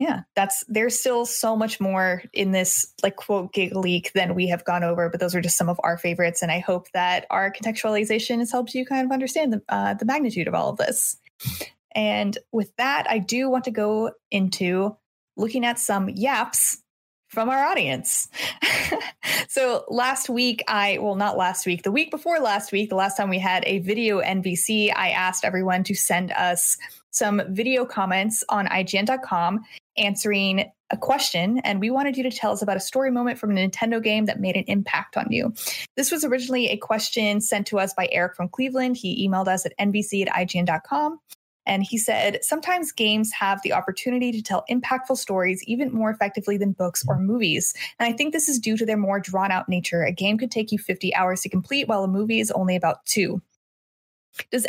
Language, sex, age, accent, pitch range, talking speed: English, female, 20-39, American, 185-240 Hz, 200 wpm